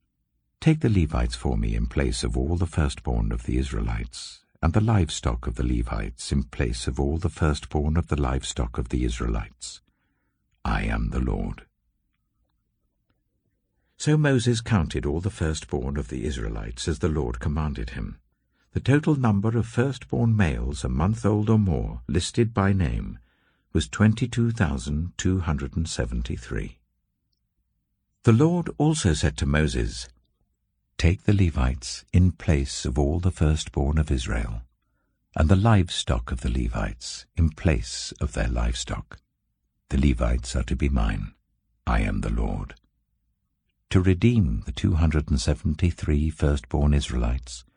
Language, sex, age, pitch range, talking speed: English, male, 60-79, 70-100 Hz, 140 wpm